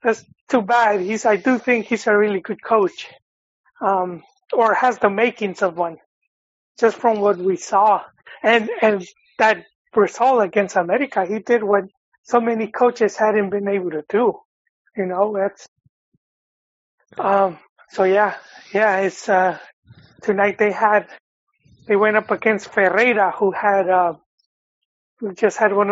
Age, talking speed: 30-49, 150 wpm